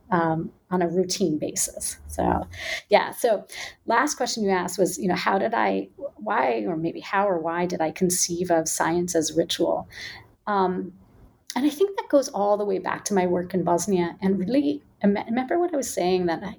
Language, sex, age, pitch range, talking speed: English, female, 30-49, 175-215 Hz, 195 wpm